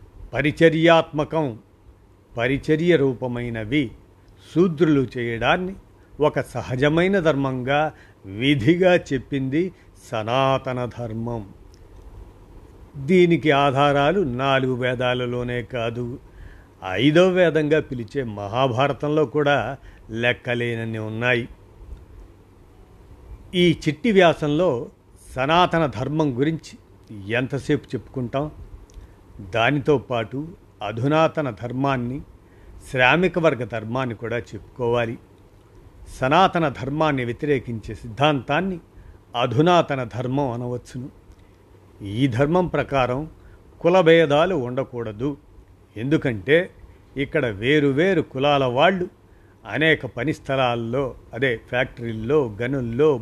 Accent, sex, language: native, male, Telugu